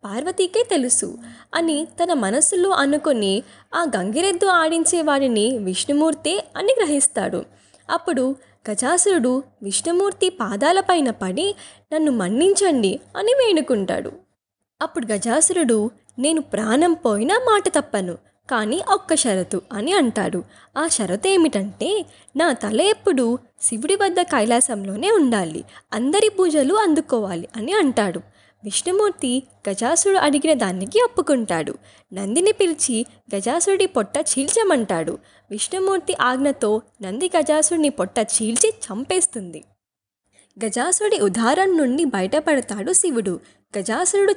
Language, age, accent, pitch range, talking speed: Telugu, 20-39, native, 215-355 Hz, 95 wpm